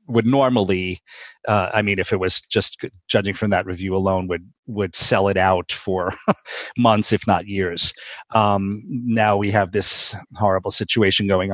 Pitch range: 95-125 Hz